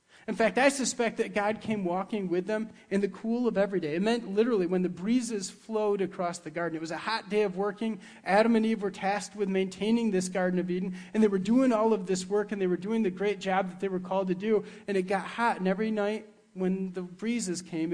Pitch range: 170-210 Hz